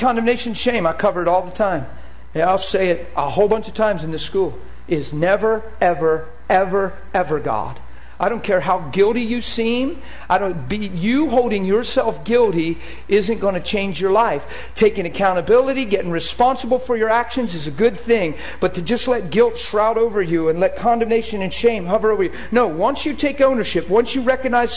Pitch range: 160-220 Hz